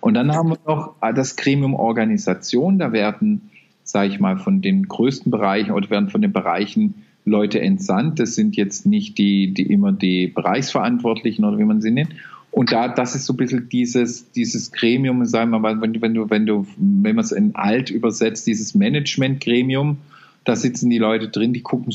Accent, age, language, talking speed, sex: German, 40-59, German, 190 wpm, male